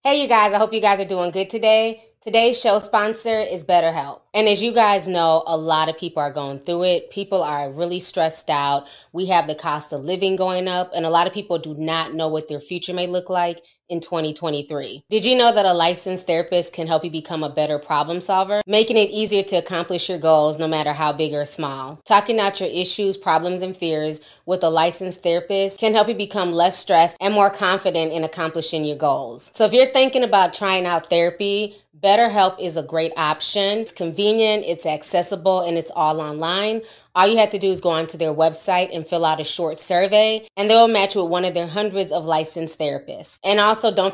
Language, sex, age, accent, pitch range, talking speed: English, female, 20-39, American, 160-205 Hz, 220 wpm